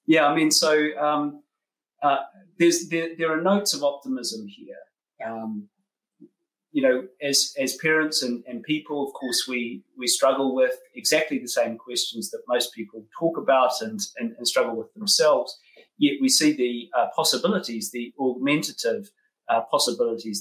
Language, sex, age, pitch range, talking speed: English, male, 40-59, 120-195 Hz, 160 wpm